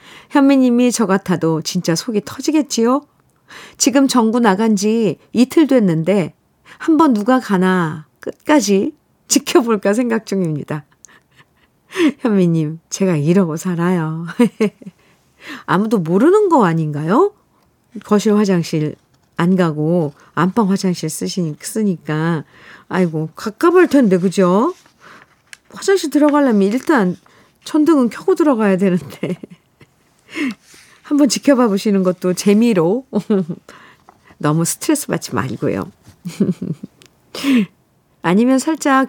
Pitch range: 170-250 Hz